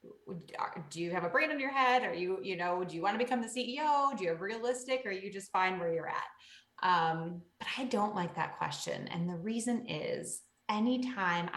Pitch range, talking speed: 170-215 Hz, 225 wpm